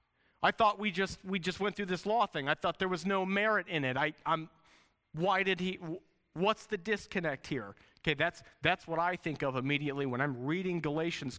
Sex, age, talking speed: male, 40-59, 210 wpm